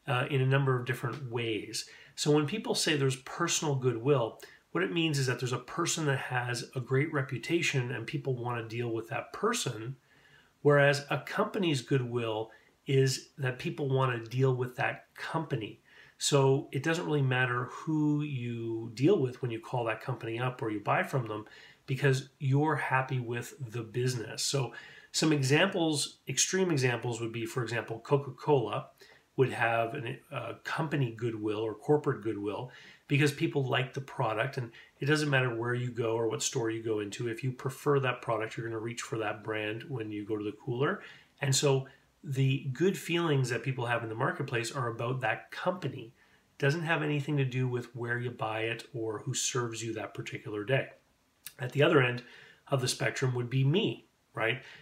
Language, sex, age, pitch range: English, male, 30-49, 120-145 Hz